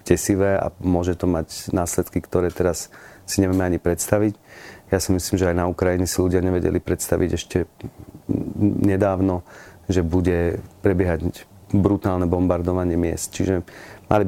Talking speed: 135 wpm